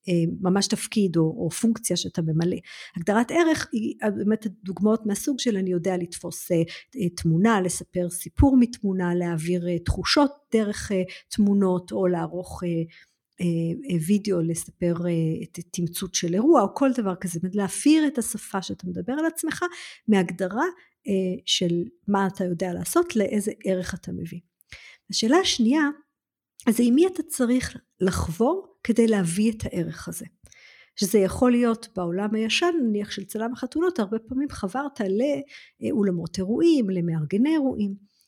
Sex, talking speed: female, 130 wpm